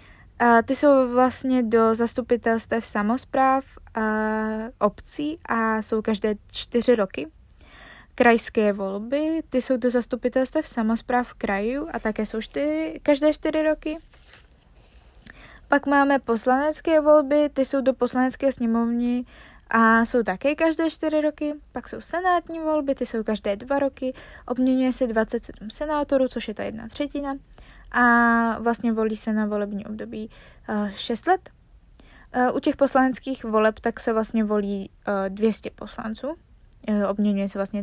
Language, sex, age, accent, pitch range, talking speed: Czech, female, 20-39, native, 220-275 Hz, 130 wpm